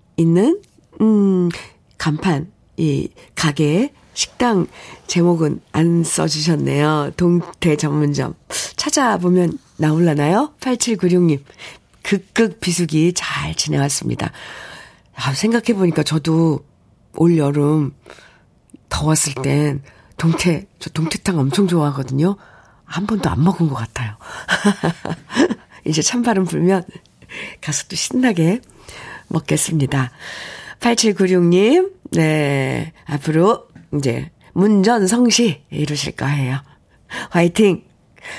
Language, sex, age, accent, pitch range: Korean, female, 50-69, native, 150-205 Hz